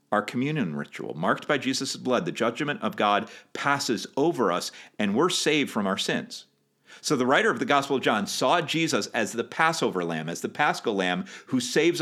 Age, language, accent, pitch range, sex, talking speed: 50-69, English, American, 95-145 Hz, male, 200 wpm